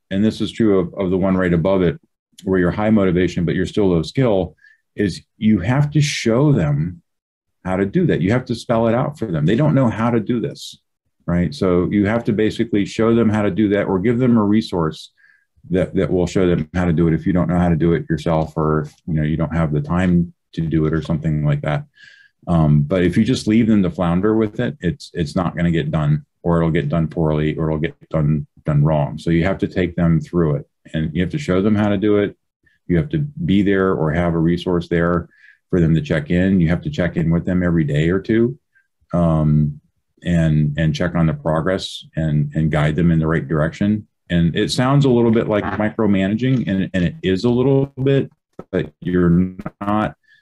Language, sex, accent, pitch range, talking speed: English, male, American, 80-110 Hz, 240 wpm